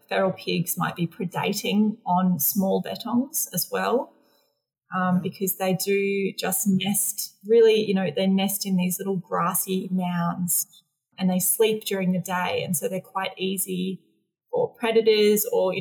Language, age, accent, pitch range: English, 20-39, Australian, 180-205 Hz